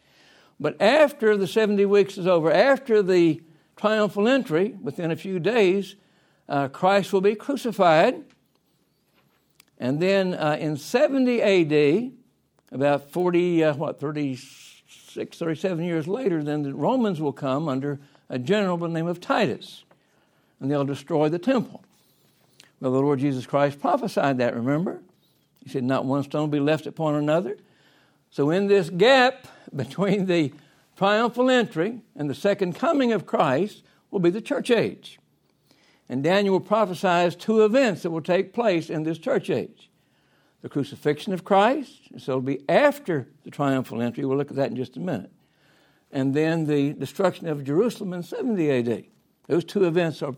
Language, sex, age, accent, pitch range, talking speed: English, male, 60-79, American, 145-200 Hz, 160 wpm